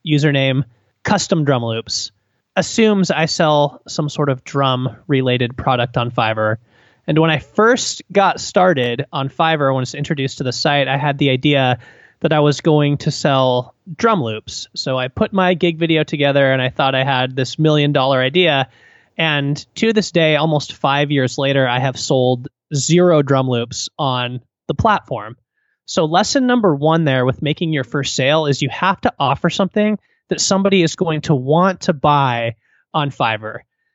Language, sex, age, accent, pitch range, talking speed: English, male, 20-39, American, 135-180 Hz, 175 wpm